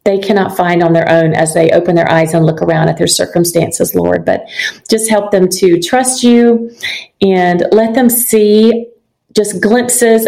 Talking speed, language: 180 wpm, English